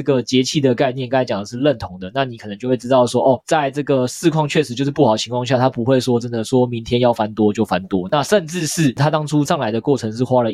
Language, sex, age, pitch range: Chinese, male, 20-39, 115-145 Hz